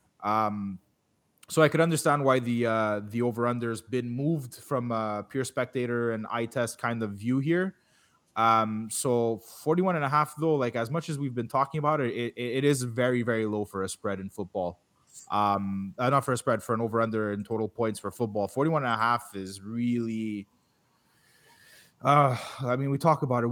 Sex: male